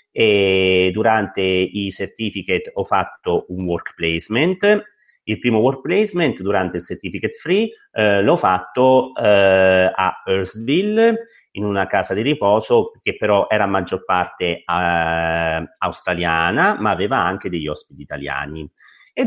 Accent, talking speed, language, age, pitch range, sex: native, 135 wpm, Italian, 40-59, 85-115 Hz, male